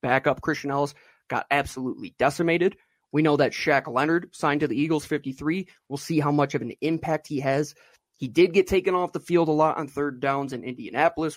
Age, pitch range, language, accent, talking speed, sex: 20-39, 135-175 Hz, English, American, 205 wpm, male